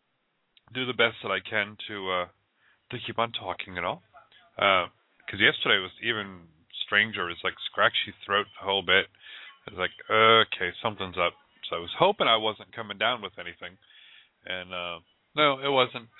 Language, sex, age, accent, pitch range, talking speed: English, male, 30-49, American, 95-125 Hz, 180 wpm